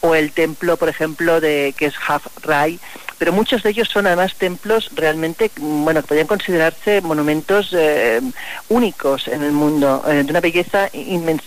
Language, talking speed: Spanish, 165 wpm